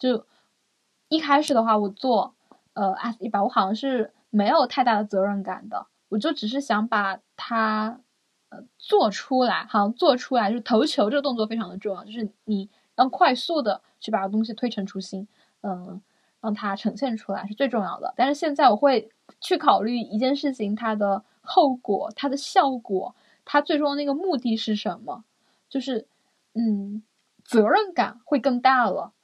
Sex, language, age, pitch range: female, Chinese, 10-29, 205-255 Hz